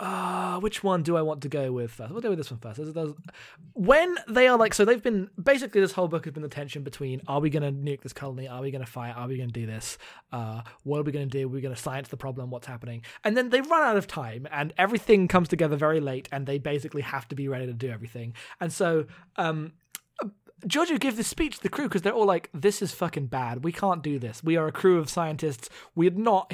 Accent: British